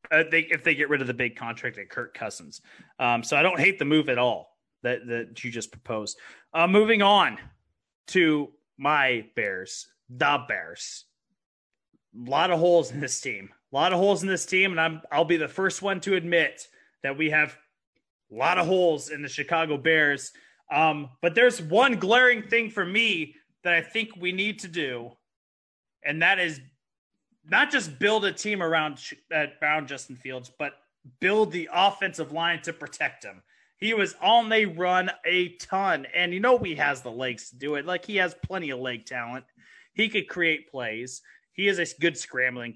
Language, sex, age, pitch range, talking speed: English, male, 30-49, 140-190 Hz, 190 wpm